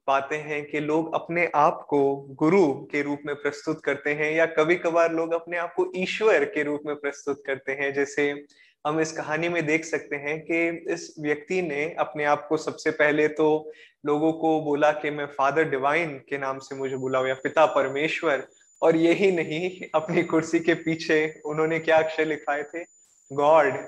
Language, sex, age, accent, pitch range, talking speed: Hindi, male, 20-39, native, 145-165 Hz, 185 wpm